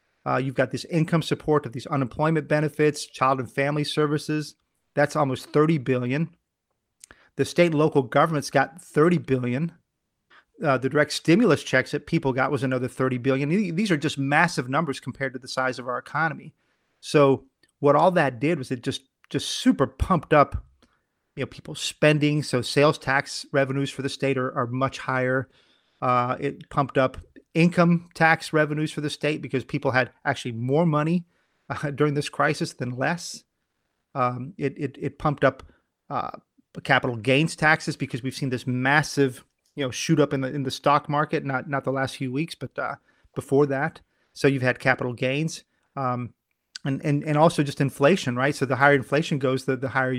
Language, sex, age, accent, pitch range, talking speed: English, male, 30-49, American, 130-155 Hz, 185 wpm